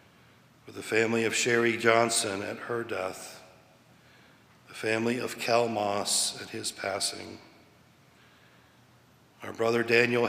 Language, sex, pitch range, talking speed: English, male, 105-125 Hz, 115 wpm